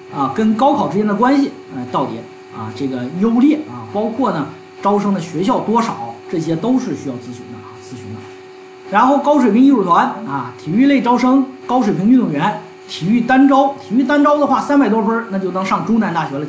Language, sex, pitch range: Chinese, male, 165-275 Hz